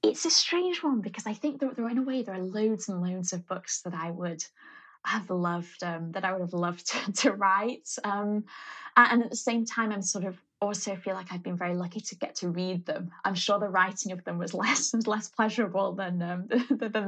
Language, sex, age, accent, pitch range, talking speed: English, female, 20-39, British, 175-230 Hz, 240 wpm